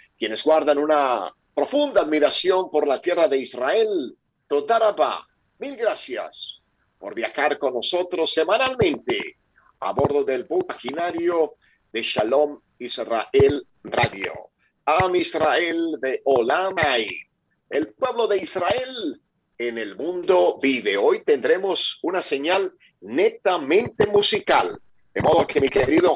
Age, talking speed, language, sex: 50-69, 115 wpm, Spanish, male